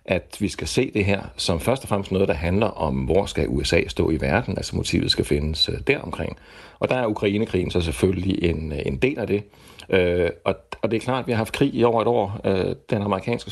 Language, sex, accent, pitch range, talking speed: Danish, male, native, 90-105 Hz, 250 wpm